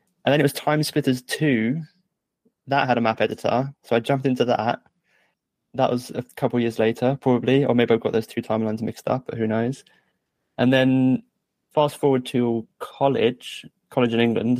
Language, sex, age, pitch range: English, male, 20-39, 110-125 Hz